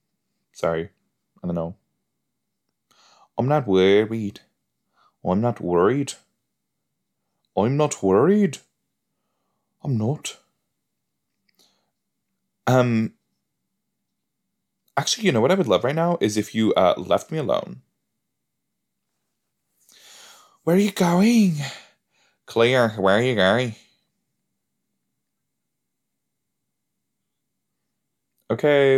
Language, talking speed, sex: English, 85 wpm, male